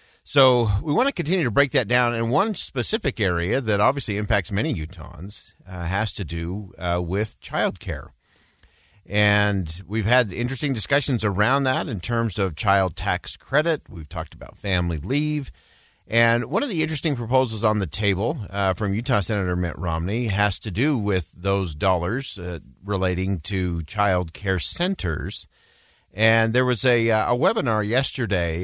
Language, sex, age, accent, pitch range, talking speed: English, male, 50-69, American, 90-120 Hz, 165 wpm